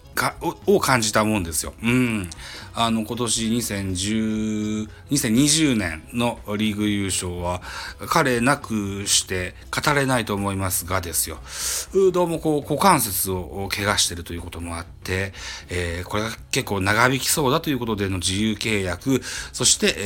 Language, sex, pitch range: Japanese, male, 90-110 Hz